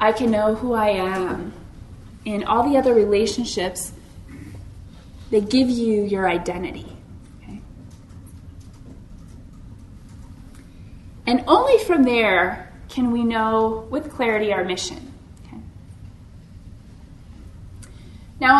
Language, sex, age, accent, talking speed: English, female, 20-39, American, 95 wpm